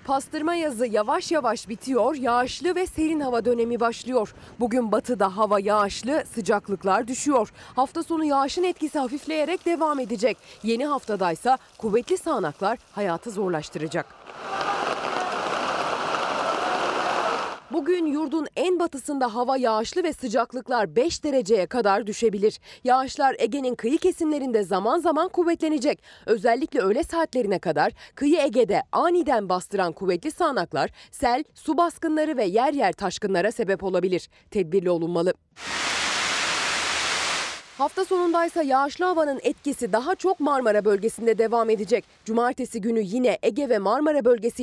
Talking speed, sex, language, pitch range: 120 wpm, female, Turkish, 215-310 Hz